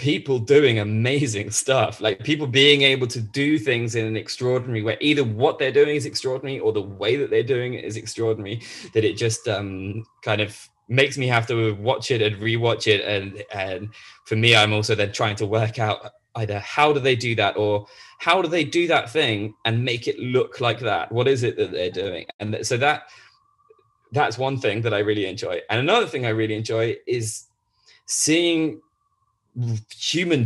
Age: 20-39